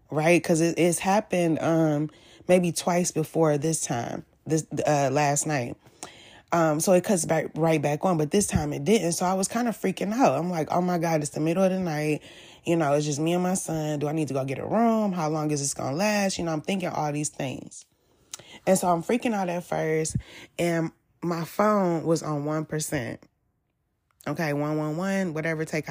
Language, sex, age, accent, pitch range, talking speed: English, female, 20-39, American, 150-190 Hz, 220 wpm